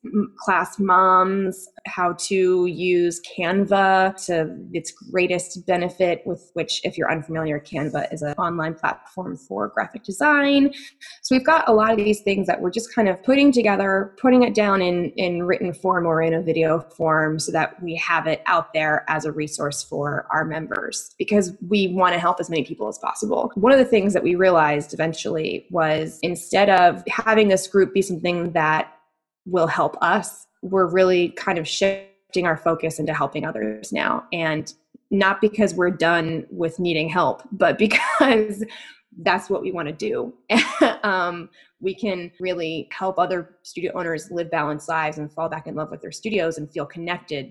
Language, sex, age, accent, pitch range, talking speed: English, female, 20-39, American, 160-200 Hz, 180 wpm